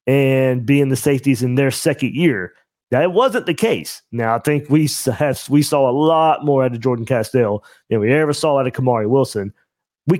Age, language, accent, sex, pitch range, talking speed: 30-49, English, American, male, 115-165 Hz, 205 wpm